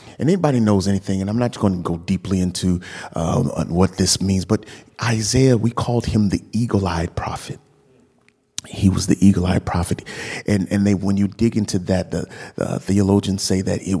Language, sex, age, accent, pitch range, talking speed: English, male, 40-59, American, 95-115 Hz, 190 wpm